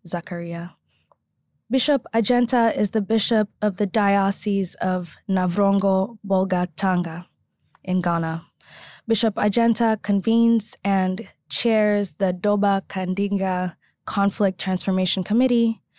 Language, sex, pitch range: English, female, 185-210 Hz